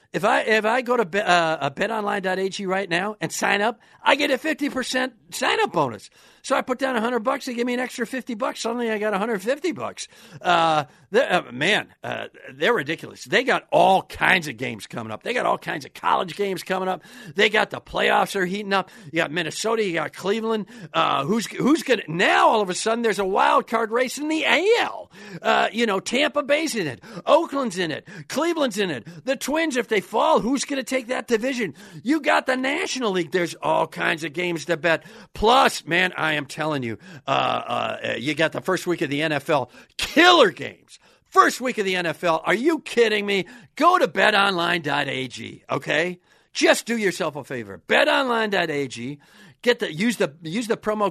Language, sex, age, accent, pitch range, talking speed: English, male, 50-69, American, 165-245 Hz, 205 wpm